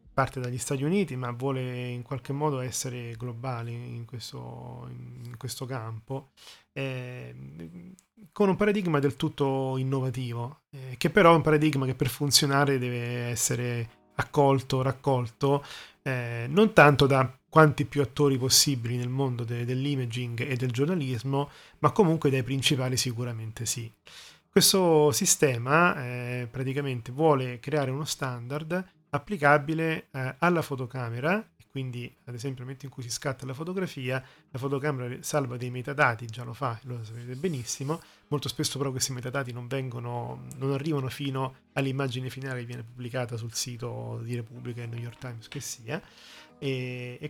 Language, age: Italian, 30-49